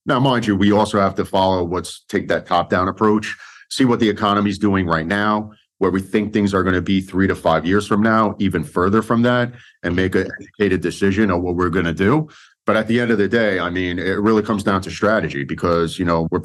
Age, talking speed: 40-59, 250 wpm